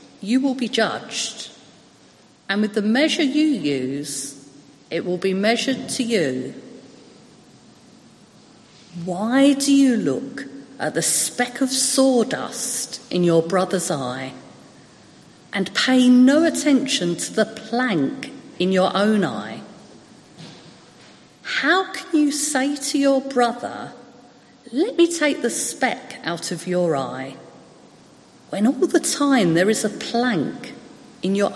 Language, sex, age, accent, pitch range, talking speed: English, female, 40-59, British, 180-270 Hz, 125 wpm